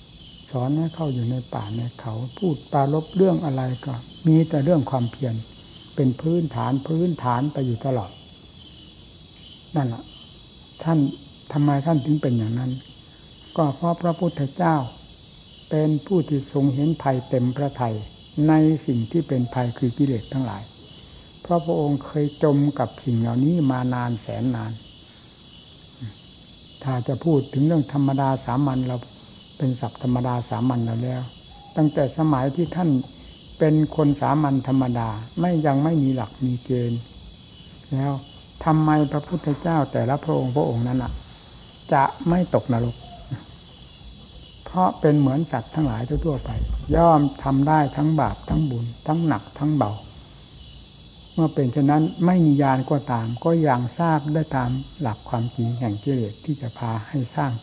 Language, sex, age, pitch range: Thai, male, 60-79, 120-155 Hz